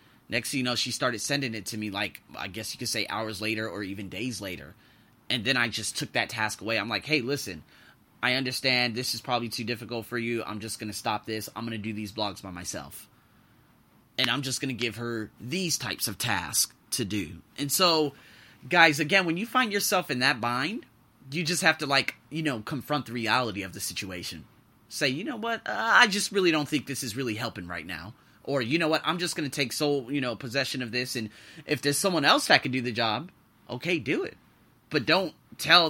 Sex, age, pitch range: male, 30-49, 110-160 Hz